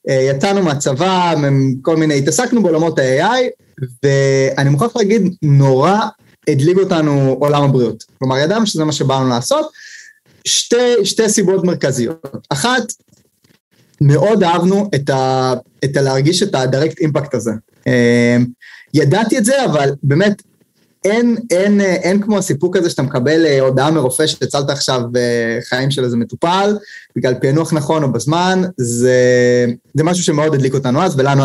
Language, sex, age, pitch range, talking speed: Hebrew, male, 20-39, 130-195 Hz, 135 wpm